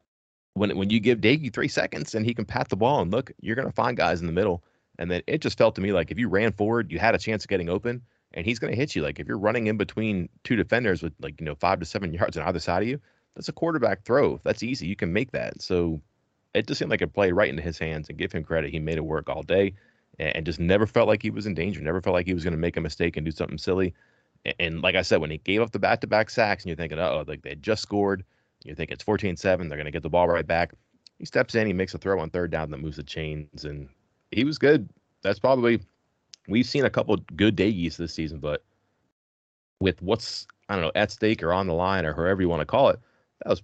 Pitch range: 80-105 Hz